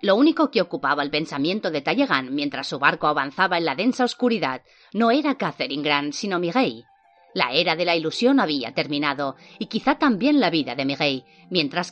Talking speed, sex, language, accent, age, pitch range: 185 wpm, female, Spanish, Spanish, 30-49, 145-245 Hz